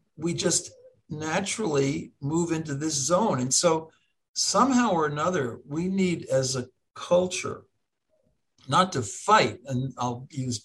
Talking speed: 130 wpm